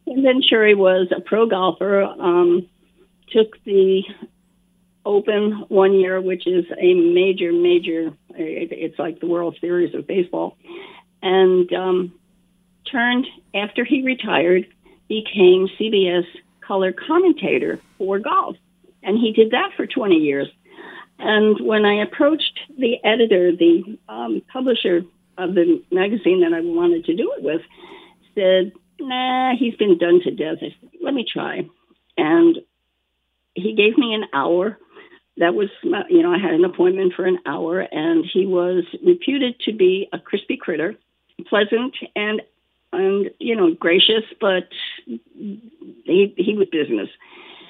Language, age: English, 50-69